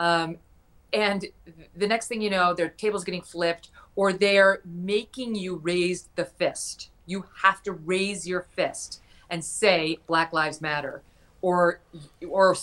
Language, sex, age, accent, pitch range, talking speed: English, female, 30-49, American, 170-225 Hz, 145 wpm